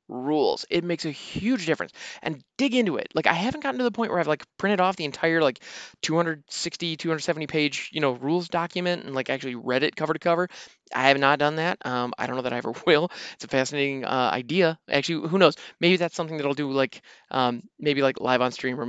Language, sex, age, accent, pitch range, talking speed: English, male, 20-39, American, 130-170 Hz, 240 wpm